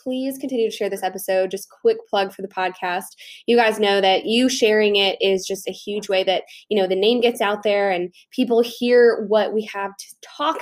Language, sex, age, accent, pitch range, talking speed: English, female, 10-29, American, 195-245 Hz, 225 wpm